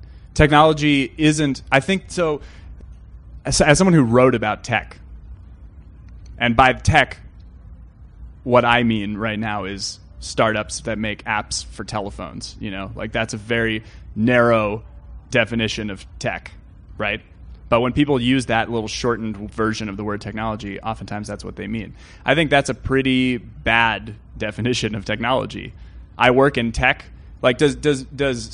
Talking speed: 150 wpm